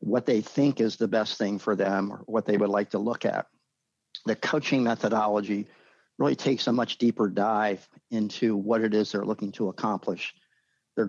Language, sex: English, male